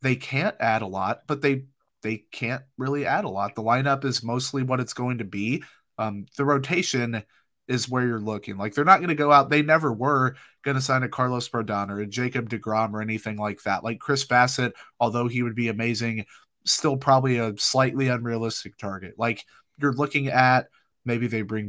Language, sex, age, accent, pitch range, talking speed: English, male, 30-49, American, 110-135 Hz, 205 wpm